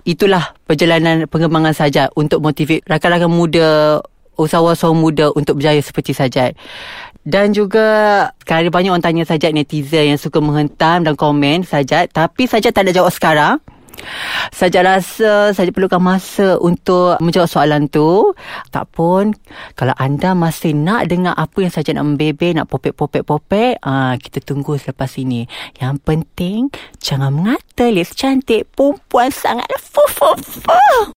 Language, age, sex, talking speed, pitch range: Malay, 30-49, female, 140 wpm, 155-195 Hz